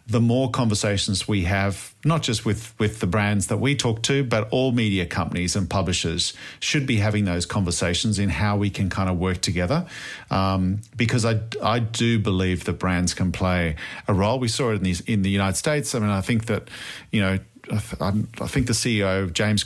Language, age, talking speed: English, 40-59, 215 wpm